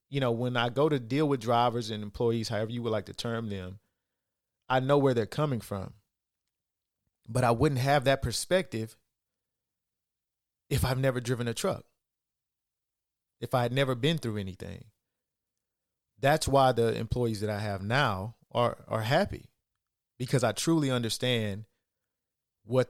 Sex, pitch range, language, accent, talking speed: male, 105-135 Hz, English, American, 155 wpm